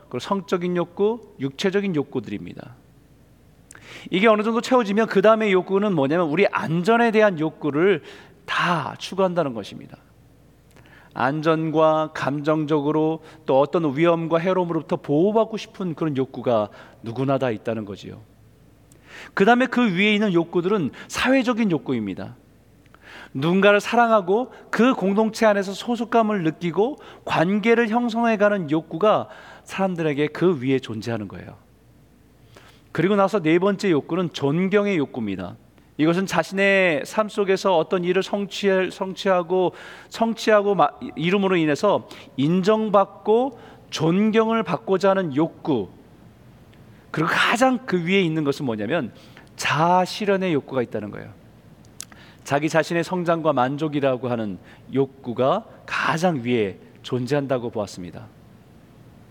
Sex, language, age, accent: male, Korean, 40-59, native